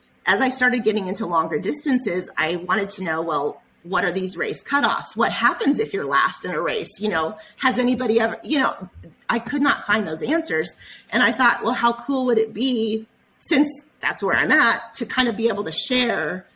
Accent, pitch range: American, 185-245 Hz